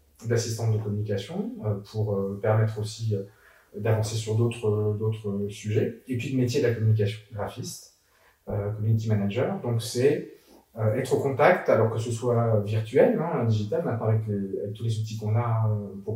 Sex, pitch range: male, 110-125 Hz